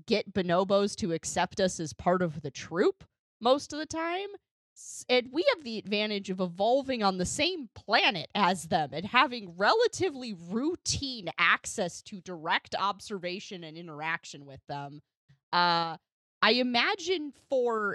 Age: 20-39